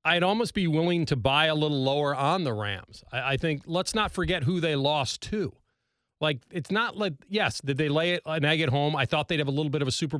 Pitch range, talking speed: 125-165 Hz, 260 wpm